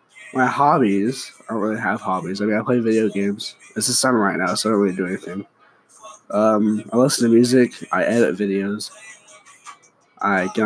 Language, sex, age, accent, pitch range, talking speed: English, male, 20-39, American, 105-130 Hz, 190 wpm